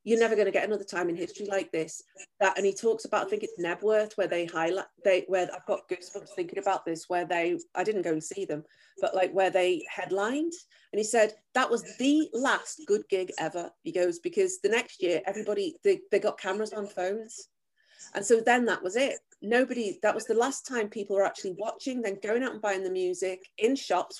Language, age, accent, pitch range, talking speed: English, 30-49, British, 180-235 Hz, 230 wpm